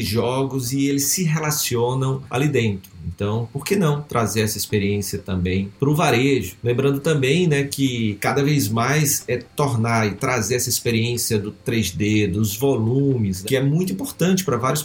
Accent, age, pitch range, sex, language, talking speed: Brazilian, 40-59, 110-145 Hz, male, Portuguese, 165 wpm